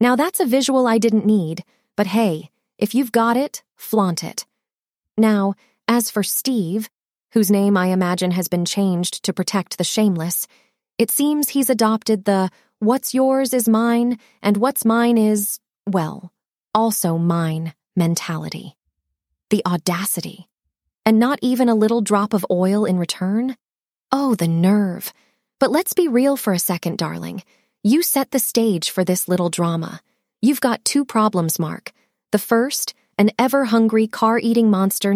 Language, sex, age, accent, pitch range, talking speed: English, female, 20-39, American, 180-235 Hz, 155 wpm